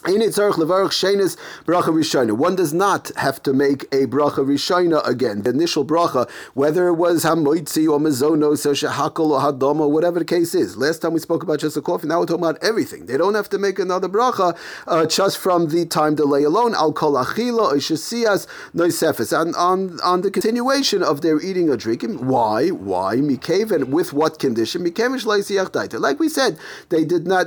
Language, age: English, 40-59